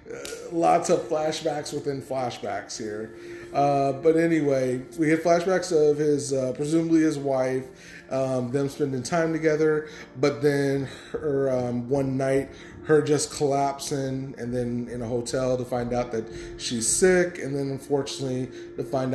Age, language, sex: 30-49, English, male